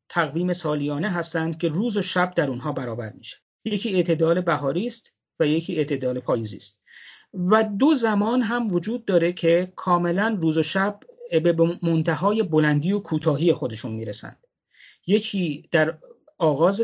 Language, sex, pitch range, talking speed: Persian, male, 150-195 Hz, 140 wpm